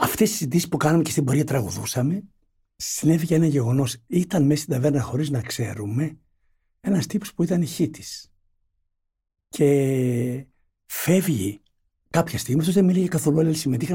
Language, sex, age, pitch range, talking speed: Greek, male, 60-79, 120-170 Hz, 150 wpm